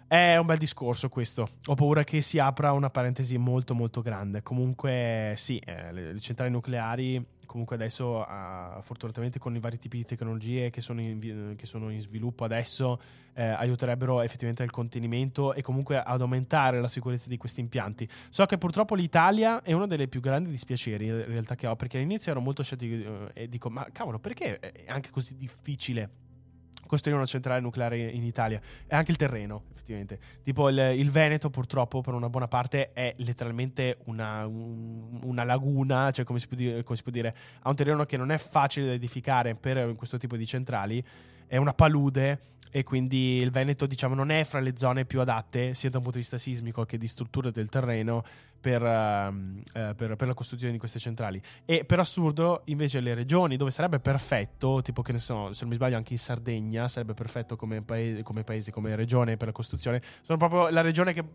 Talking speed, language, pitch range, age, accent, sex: 200 wpm, Italian, 115-135 Hz, 20-39, native, male